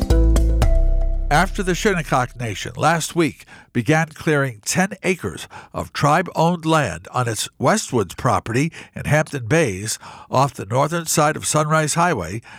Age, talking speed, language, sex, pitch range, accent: 60-79, 130 wpm, English, male, 120-165 Hz, American